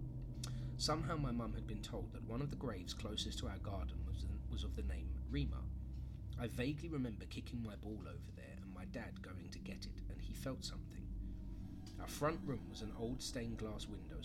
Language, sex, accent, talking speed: English, male, British, 205 wpm